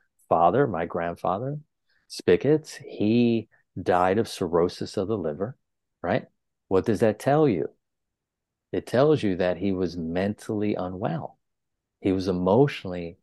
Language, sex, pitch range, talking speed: English, male, 90-115 Hz, 125 wpm